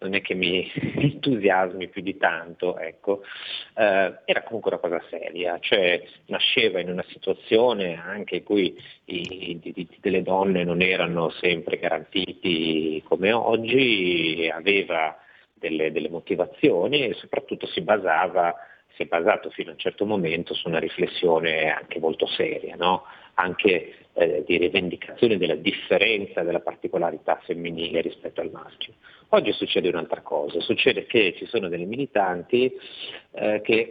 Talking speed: 140 wpm